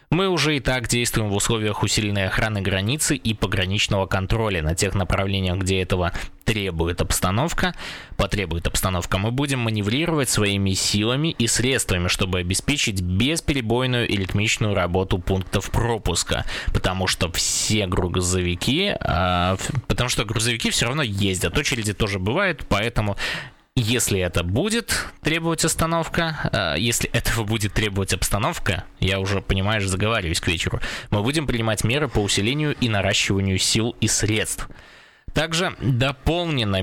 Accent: native